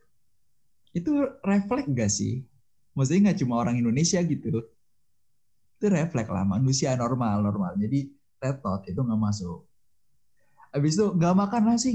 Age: 20-39